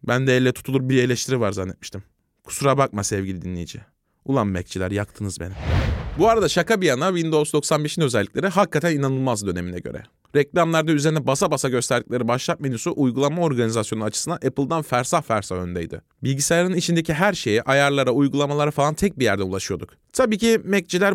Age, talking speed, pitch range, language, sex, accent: 30-49, 160 wpm, 125-180 Hz, Turkish, male, native